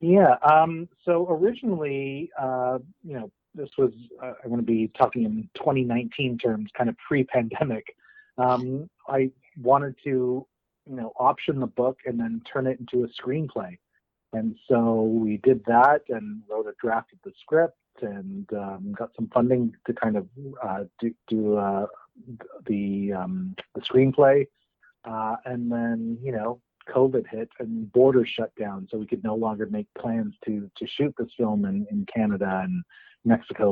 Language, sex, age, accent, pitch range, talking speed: English, male, 30-49, American, 105-135 Hz, 160 wpm